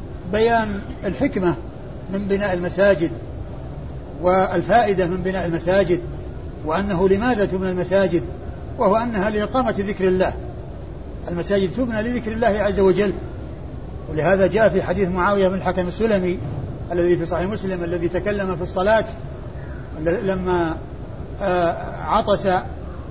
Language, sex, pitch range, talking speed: Arabic, male, 175-200 Hz, 110 wpm